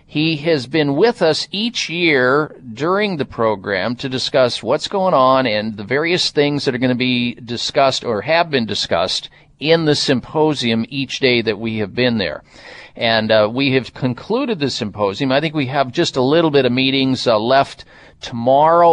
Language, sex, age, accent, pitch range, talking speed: English, male, 50-69, American, 130-180 Hz, 185 wpm